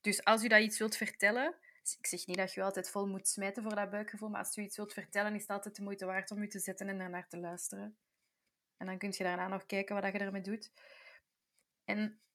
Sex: female